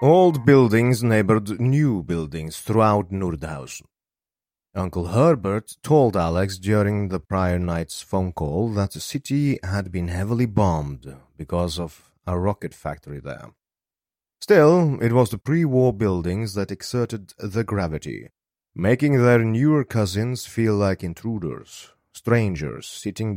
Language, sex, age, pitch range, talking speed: English, male, 30-49, 85-115 Hz, 125 wpm